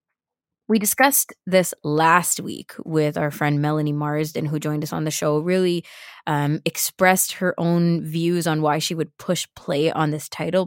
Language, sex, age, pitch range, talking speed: English, female, 20-39, 150-185 Hz, 175 wpm